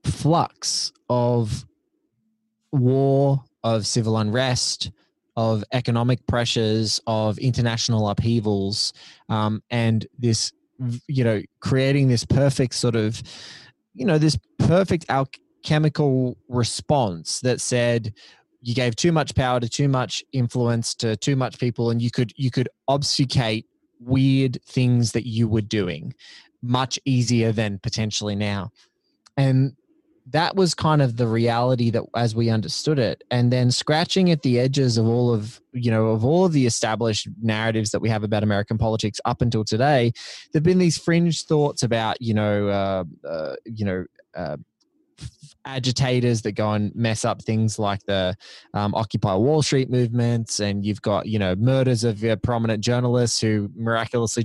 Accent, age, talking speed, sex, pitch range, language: Australian, 20-39, 150 wpm, male, 110-135 Hz, English